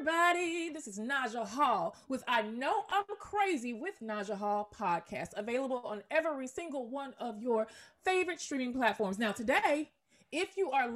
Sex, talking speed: female, 155 wpm